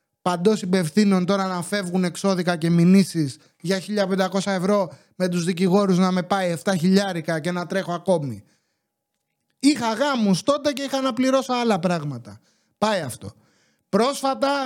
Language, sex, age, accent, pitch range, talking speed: English, male, 30-49, Greek, 175-225 Hz, 145 wpm